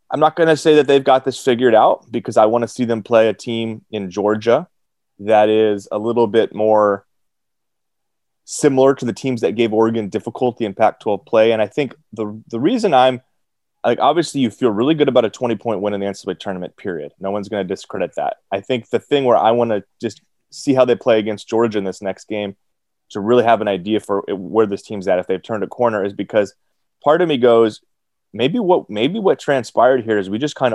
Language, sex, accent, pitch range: English, male, American, 100-125 Hz